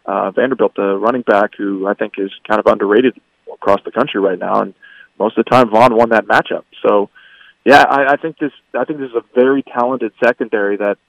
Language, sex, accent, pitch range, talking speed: English, male, American, 105-130 Hz, 220 wpm